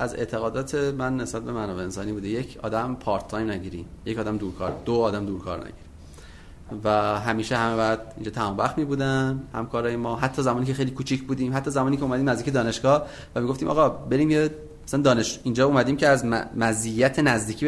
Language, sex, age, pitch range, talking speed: Persian, male, 30-49, 100-135 Hz, 195 wpm